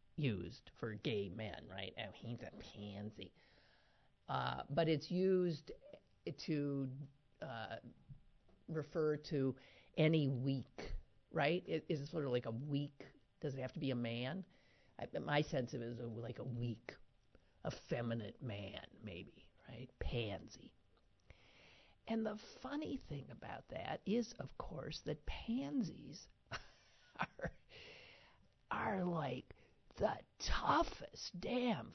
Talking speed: 120 wpm